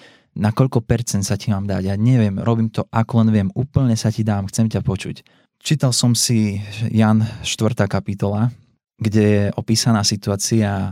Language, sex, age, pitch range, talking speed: Slovak, male, 20-39, 100-115 Hz, 165 wpm